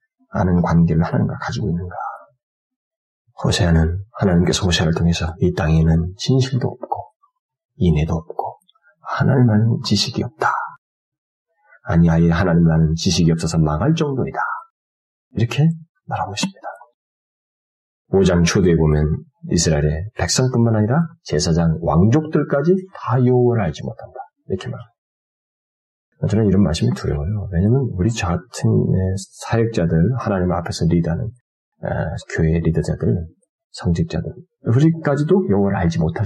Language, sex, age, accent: Korean, male, 30-49, native